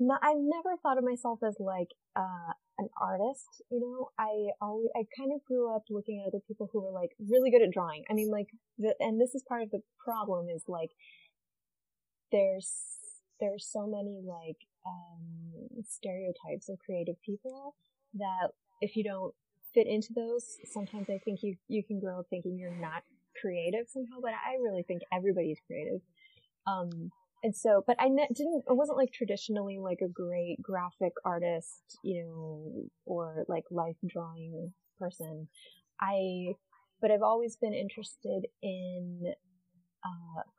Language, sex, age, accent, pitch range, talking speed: English, female, 20-39, American, 185-235 Hz, 160 wpm